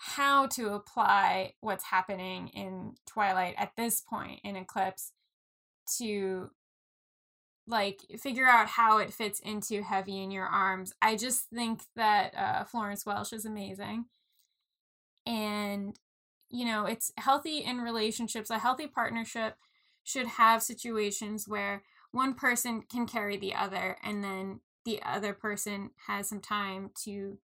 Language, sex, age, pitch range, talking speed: English, female, 10-29, 205-230 Hz, 135 wpm